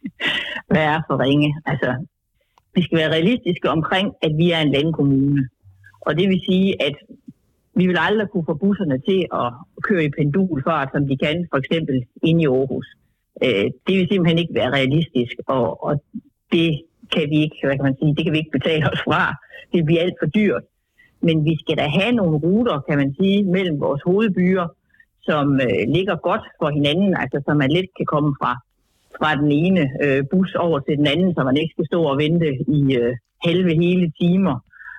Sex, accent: female, native